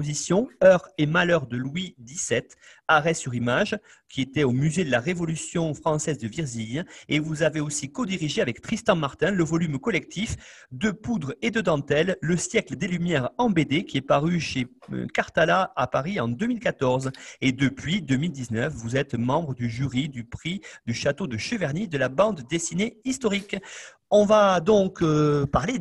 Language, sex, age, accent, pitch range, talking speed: French, male, 40-59, French, 130-180 Hz, 170 wpm